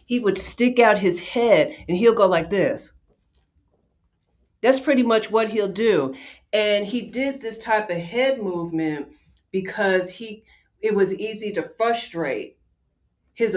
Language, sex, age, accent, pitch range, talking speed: English, female, 40-59, American, 165-225 Hz, 145 wpm